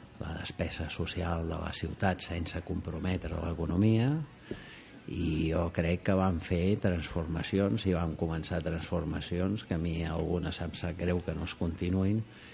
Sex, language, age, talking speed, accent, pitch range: male, Spanish, 50-69, 150 wpm, Spanish, 85-95 Hz